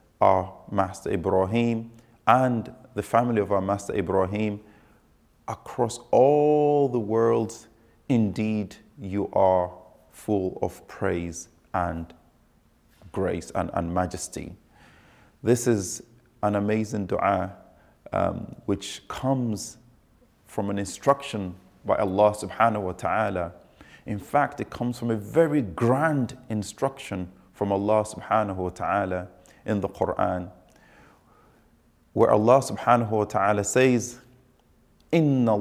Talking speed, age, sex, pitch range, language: 110 wpm, 30-49, male, 95-120 Hz, English